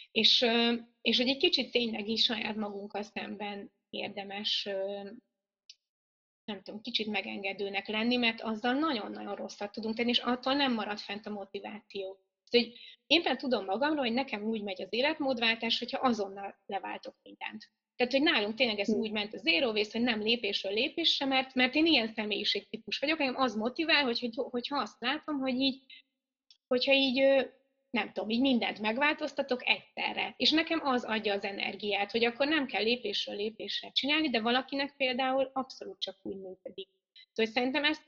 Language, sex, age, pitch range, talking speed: Hungarian, female, 20-39, 210-265 Hz, 160 wpm